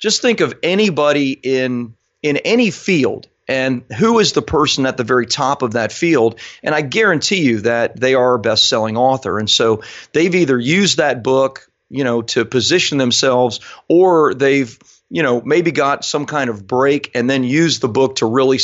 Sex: male